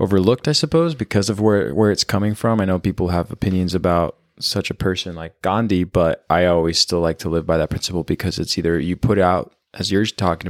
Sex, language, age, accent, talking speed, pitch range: male, English, 20-39, American, 230 wpm, 80-95 Hz